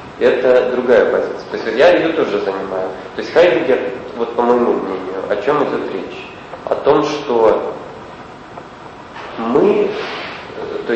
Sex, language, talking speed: male, Russian, 135 wpm